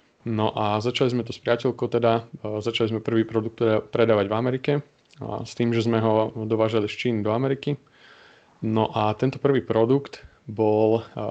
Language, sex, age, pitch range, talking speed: Slovak, male, 20-39, 110-125 Hz, 170 wpm